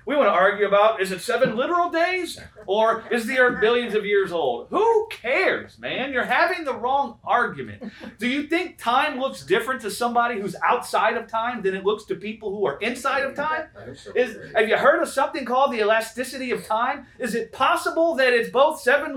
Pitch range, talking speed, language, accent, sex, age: 190-275 Hz, 205 wpm, English, American, male, 30-49